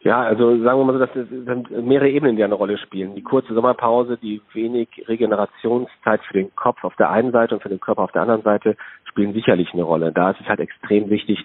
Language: German